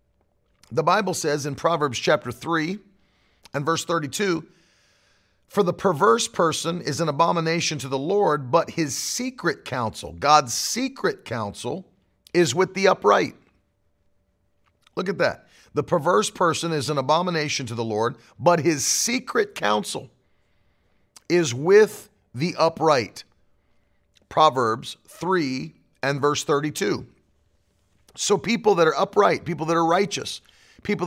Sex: male